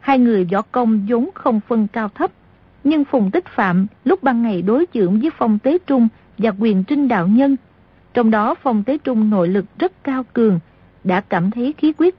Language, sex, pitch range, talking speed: Vietnamese, female, 200-265 Hz, 205 wpm